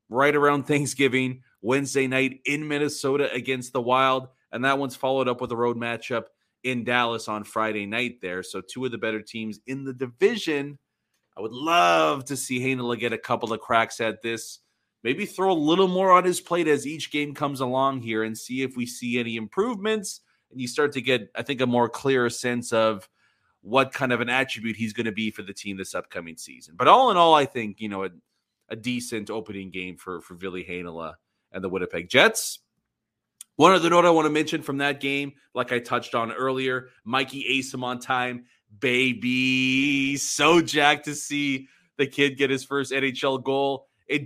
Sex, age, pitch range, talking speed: male, 30-49, 120-145 Hz, 200 wpm